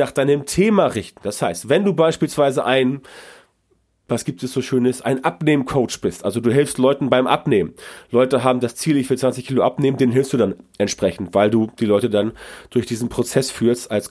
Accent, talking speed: German, 205 wpm